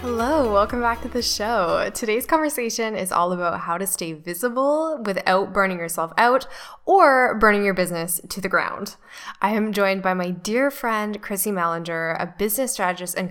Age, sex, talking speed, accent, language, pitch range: 10-29, female, 175 wpm, American, English, 180-235 Hz